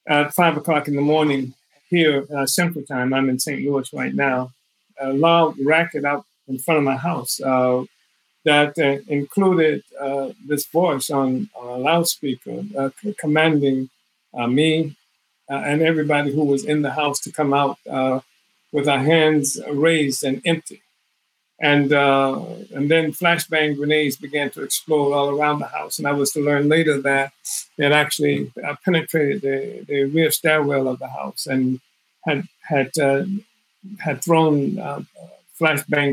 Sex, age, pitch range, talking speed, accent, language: male, 50-69, 140-160 Hz, 160 wpm, American, English